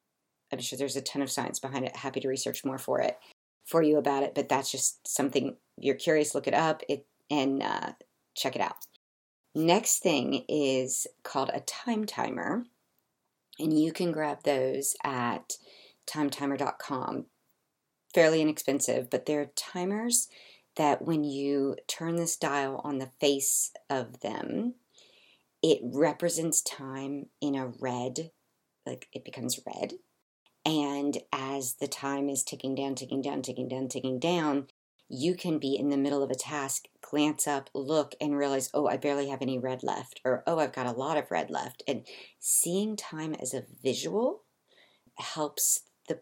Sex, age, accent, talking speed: female, 40-59, American, 160 wpm